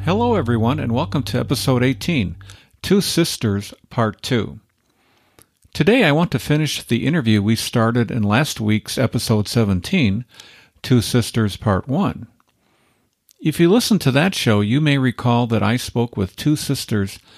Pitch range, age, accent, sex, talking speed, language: 110-135 Hz, 50-69, American, male, 150 wpm, English